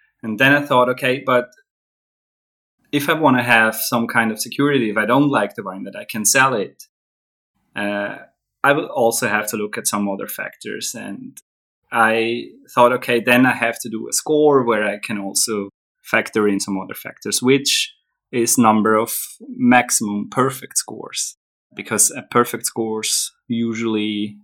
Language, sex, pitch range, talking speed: English, male, 105-125 Hz, 170 wpm